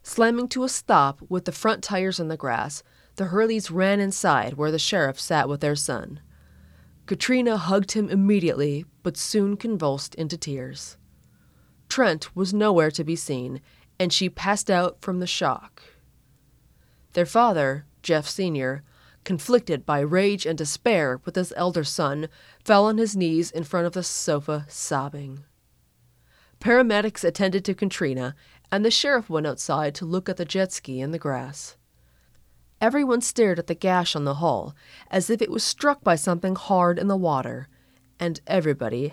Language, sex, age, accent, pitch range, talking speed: English, female, 30-49, American, 140-200 Hz, 165 wpm